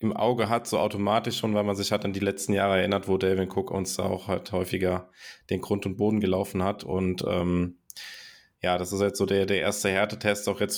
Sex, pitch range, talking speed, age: male, 95-105 Hz, 240 wpm, 20-39